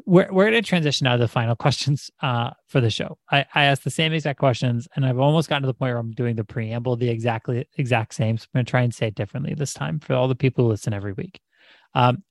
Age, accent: 30-49, American